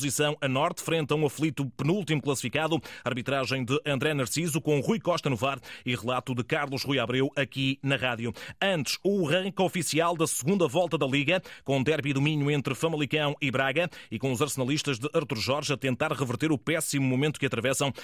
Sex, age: male, 30-49